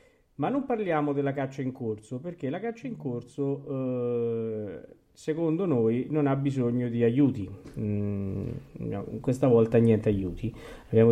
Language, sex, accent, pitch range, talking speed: Italian, male, native, 110-145 Hz, 140 wpm